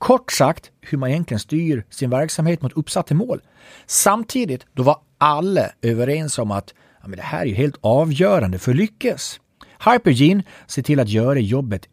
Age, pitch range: 40-59, 120-185 Hz